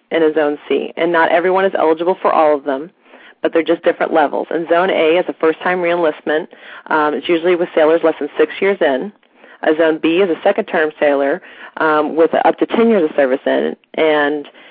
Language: English